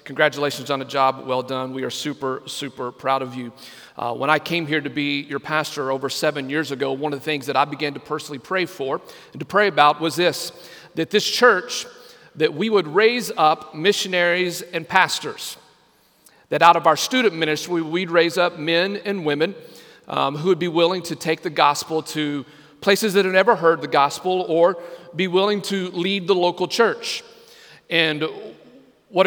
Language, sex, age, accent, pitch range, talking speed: English, male, 40-59, American, 145-180 Hz, 190 wpm